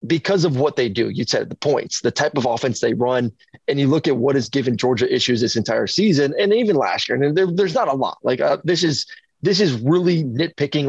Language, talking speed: English, 240 wpm